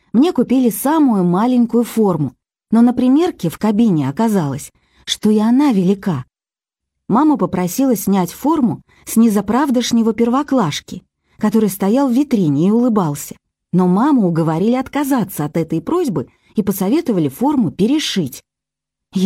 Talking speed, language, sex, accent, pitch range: 120 wpm, Russian, female, native, 180-250 Hz